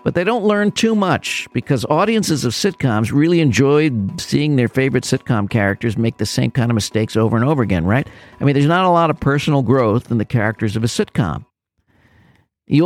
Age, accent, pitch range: 50-69, American, 105-135 Hz